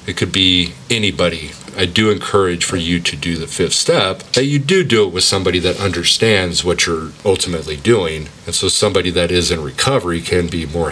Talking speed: 205 wpm